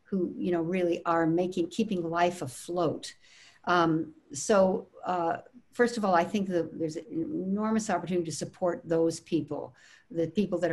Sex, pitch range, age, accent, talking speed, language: female, 160-190 Hz, 60-79, American, 160 wpm, English